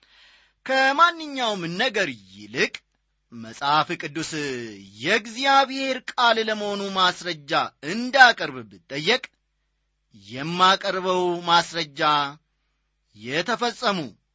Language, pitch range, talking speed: Amharic, 145-230 Hz, 55 wpm